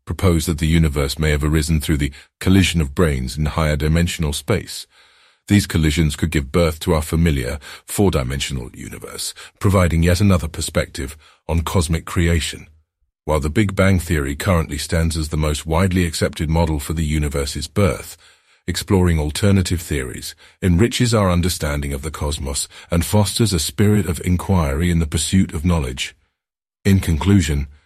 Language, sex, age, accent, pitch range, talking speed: English, male, 50-69, British, 75-95 Hz, 155 wpm